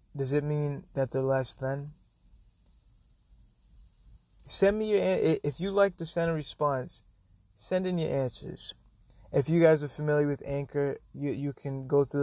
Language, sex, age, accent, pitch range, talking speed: English, male, 30-49, American, 130-165 Hz, 160 wpm